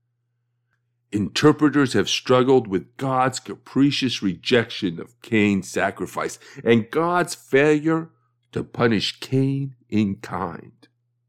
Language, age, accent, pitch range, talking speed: English, 50-69, American, 120-160 Hz, 95 wpm